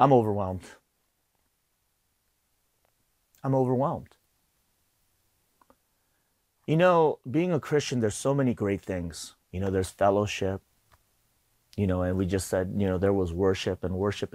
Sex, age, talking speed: male, 30-49, 130 wpm